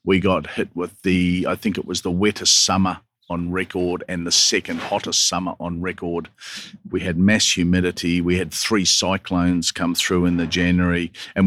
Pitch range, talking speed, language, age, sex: 90-100 Hz, 185 wpm, English, 40-59, male